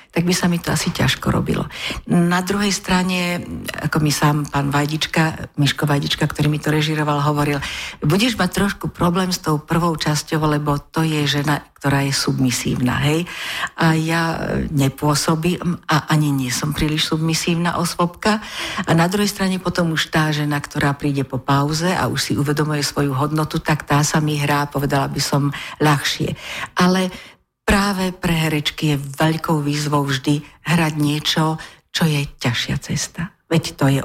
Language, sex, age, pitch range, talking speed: Slovak, female, 50-69, 140-160 Hz, 160 wpm